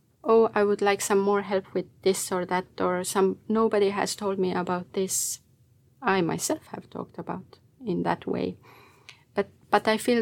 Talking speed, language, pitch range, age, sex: 180 wpm, Finnish, 180-210 Hz, 30-49, female